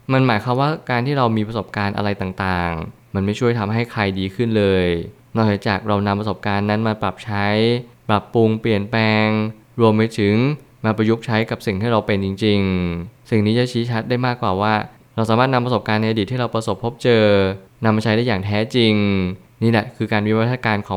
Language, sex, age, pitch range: Thai, male, 20-39, 100-120 Hz